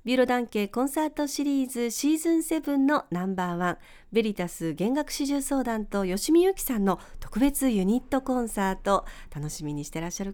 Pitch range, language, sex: 185-290 Hz, Japanese, female